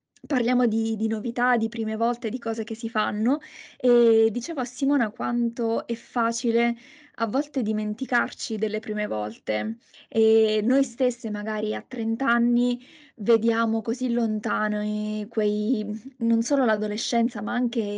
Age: 20-39